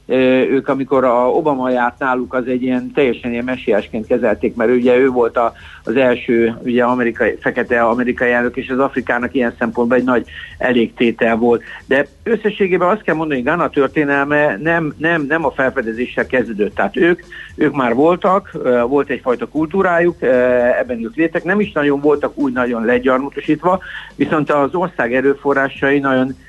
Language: Hungarian